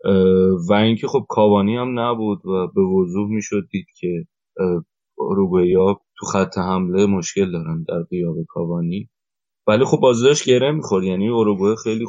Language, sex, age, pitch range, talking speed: Persian, male, 30-49, 95-115 Hz, 145 wpm